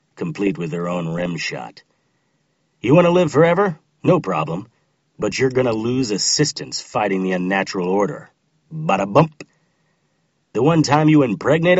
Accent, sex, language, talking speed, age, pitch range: American, male, English, 145 wpm, 40-59, 115-155 Hz